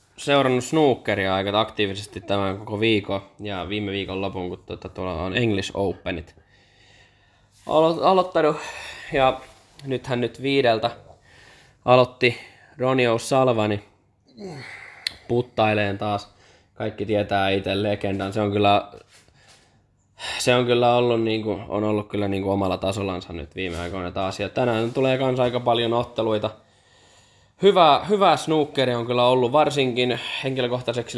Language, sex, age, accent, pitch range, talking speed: Finnish, male, 20-39, native, 100-125 Hz, 110 wpm